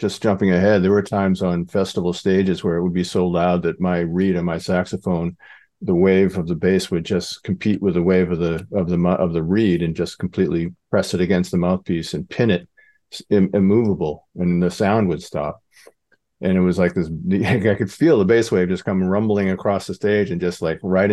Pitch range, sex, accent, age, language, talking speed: 85-100 Hz, male, American, 50-69, English, 220 wpm